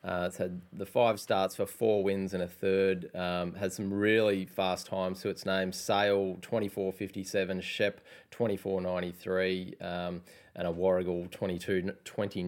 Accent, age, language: Australian, 20-39, English